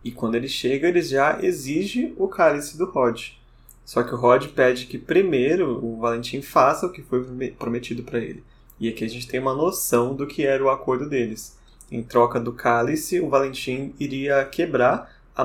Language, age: Portuguese, 20-39